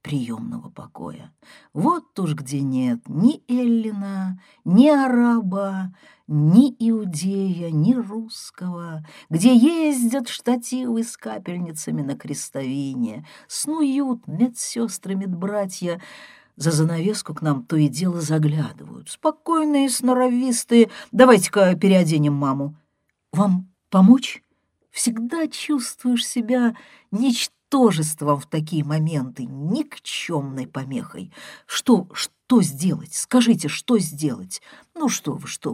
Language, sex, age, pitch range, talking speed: Russian, female, 50-69, 155-245 Hz, 95 wpm